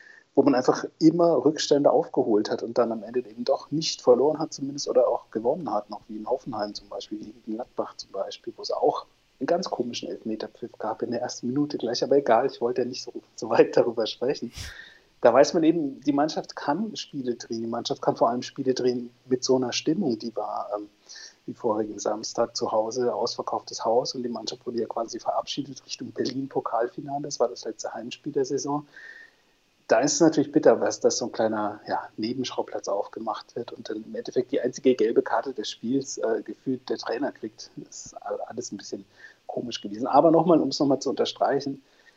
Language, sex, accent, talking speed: German, male, German, 205 wpm